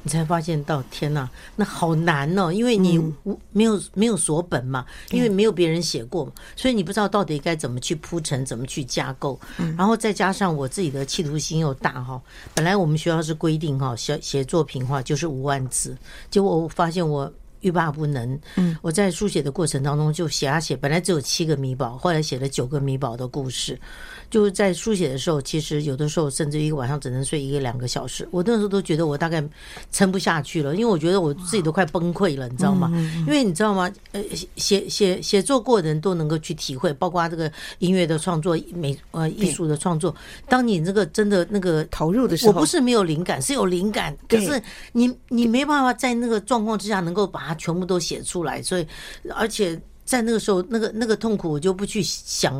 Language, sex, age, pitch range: Chinese, female, 60-79, 150-200 Hz